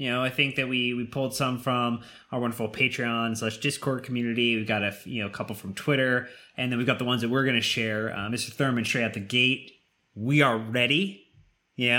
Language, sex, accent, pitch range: English, male, American, 125-160 Hz